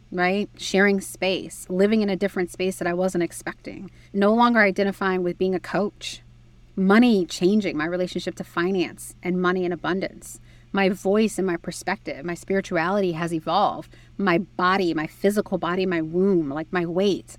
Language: English